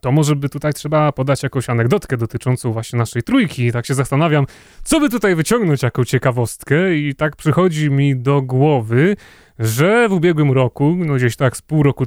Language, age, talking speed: Polish, 30-49, 190 wpm